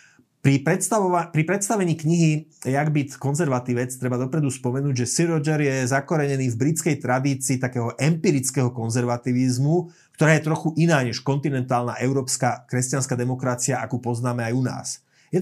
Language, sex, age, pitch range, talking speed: Slovak, male, 30-49, 125-150 Hz, 145 wpm